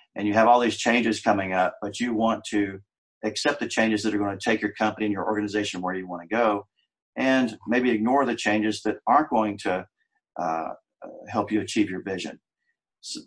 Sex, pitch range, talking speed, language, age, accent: male, 100-115 Hz, 210 wpm, English, 50-69, American